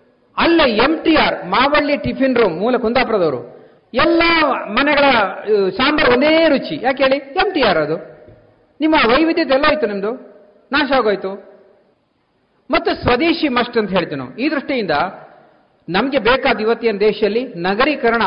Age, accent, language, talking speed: 50-69, native, Kannada, 125 wpm